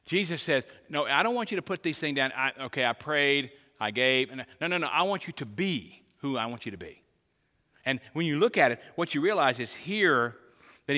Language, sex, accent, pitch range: English, male, American, 120-150 Hz